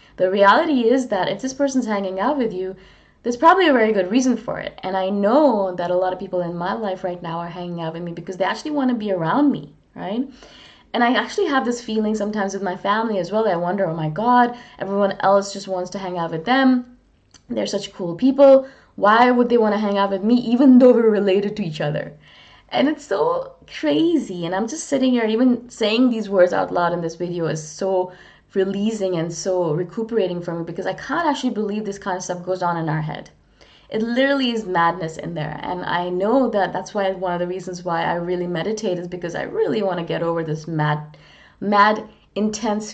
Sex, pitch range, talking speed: female, 175-240 Hz, 230 wpm